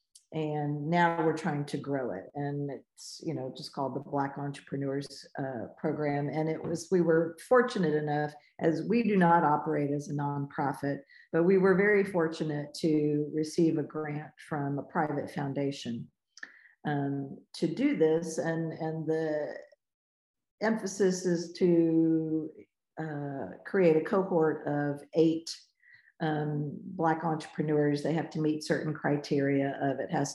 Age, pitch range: 50-69, 145-165 Hz